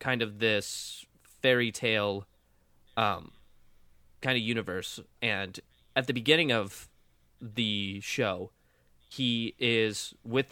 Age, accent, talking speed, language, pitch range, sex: 20-39, American, 110 wpm, English, 100-130 Hz, male